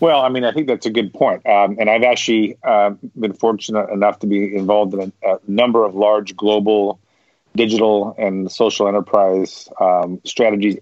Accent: American